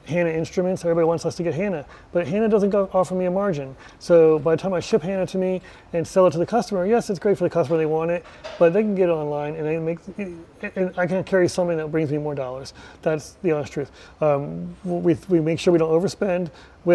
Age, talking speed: 30-49, 255 wpm